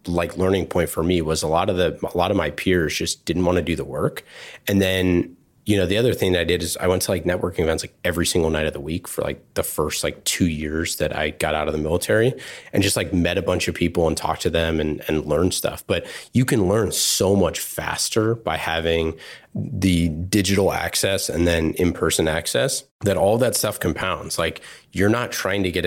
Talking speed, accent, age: 240 wpm, American, 30-49